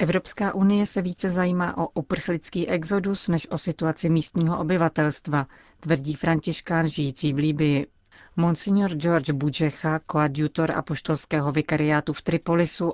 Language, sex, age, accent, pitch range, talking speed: Czech, female, 40-59, native, 150-170 Hz, 120 wpm